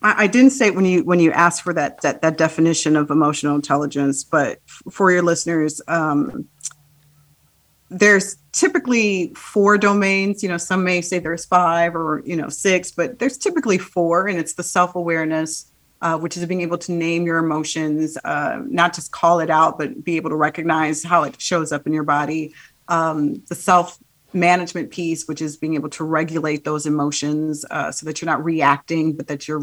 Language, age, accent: English, 40-59, American